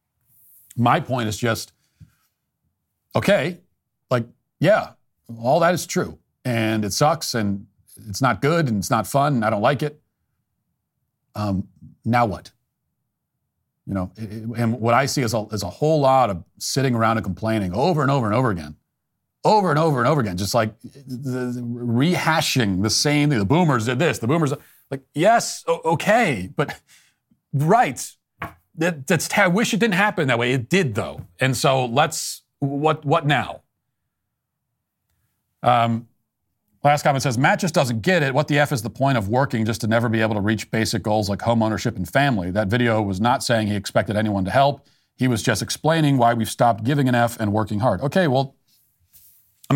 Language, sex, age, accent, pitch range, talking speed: English, male, 40-59, American, 110-145 Hz, 185 wpm